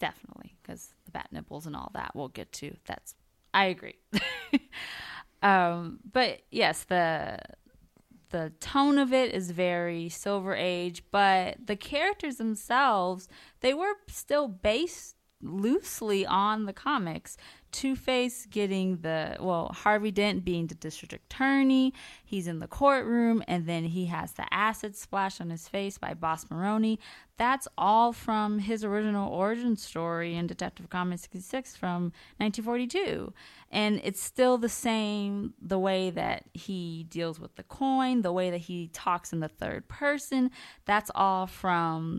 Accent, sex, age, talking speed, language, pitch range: American, female, 20-39, 150 wpm, English, 170-230 Hz